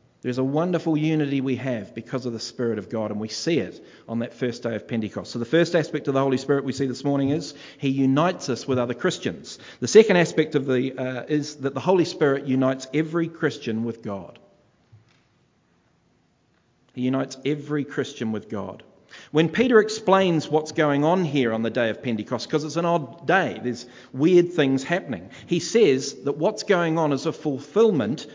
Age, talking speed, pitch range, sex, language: 40-59, 195 wpm, 130-170 Hz, male, English